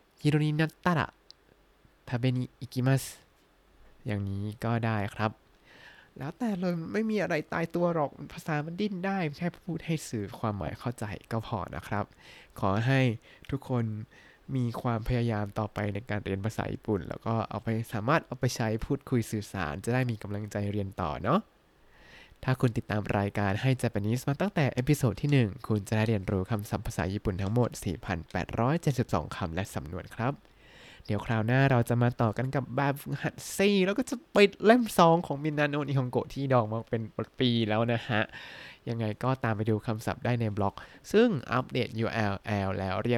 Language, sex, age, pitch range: Thai, male, 20-39, 110-145 Hz